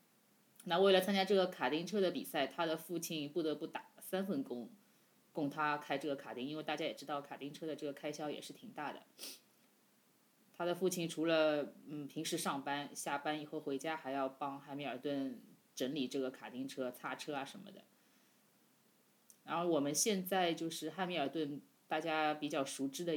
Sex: female